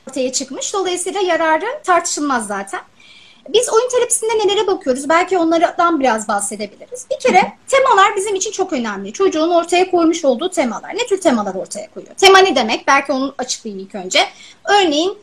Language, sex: Turkish, female